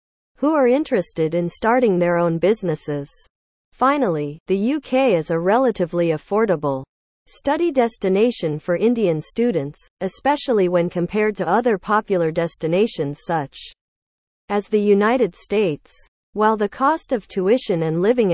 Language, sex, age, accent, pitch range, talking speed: English, female, 40-59, American, 165-235 Hz, 130 wpm